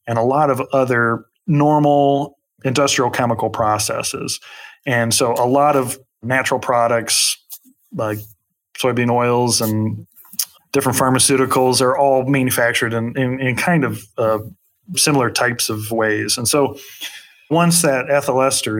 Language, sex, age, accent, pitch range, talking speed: English, male, 30-49, American, 110-130 Hz, 130 wpm